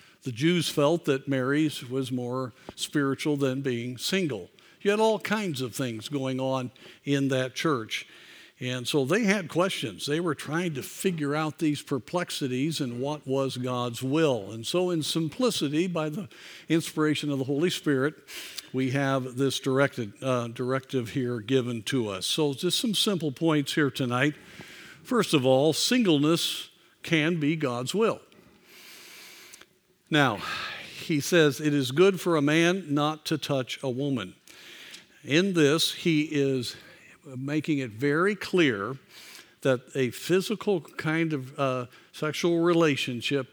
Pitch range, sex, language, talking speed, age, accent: 130-165 Hz, male, English, 145 wpm, 50-69, American